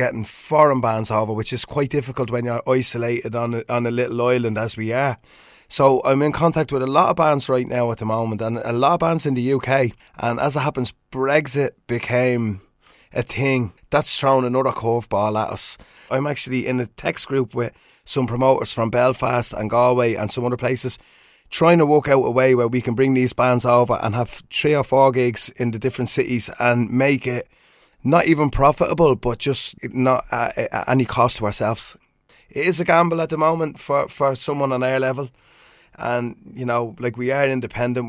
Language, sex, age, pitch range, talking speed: French, male, 20-39, 115-135 Hz, 205 wpm